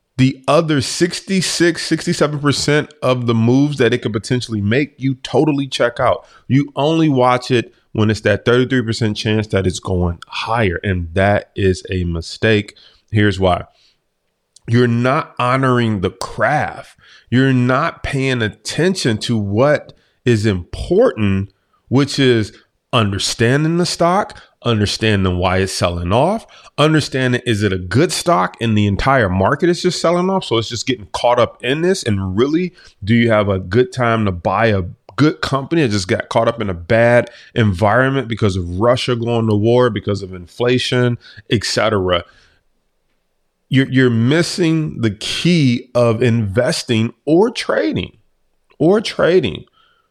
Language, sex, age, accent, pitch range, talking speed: English, male, 30-49, American, 105-135 Hz, 150 wpm